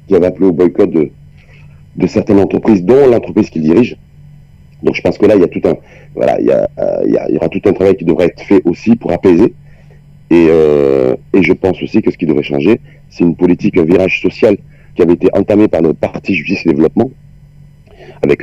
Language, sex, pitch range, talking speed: Arabic, male, 90-145 Hz, 230 wpm